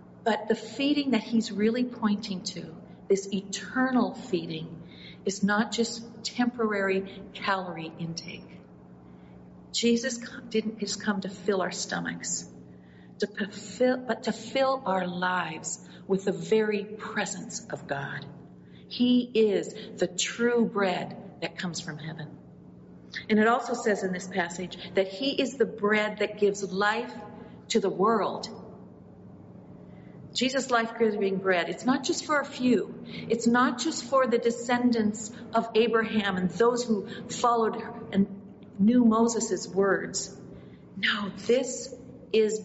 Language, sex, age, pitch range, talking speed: English, female, 50-69, 175-225 Hz, 130 wpm